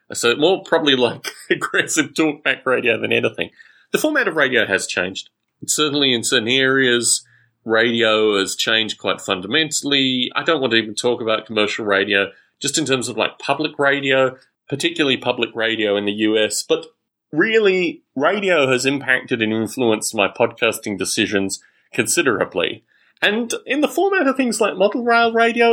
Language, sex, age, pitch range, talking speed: English, male, 30-49, 115-175 Hz, 155 wpm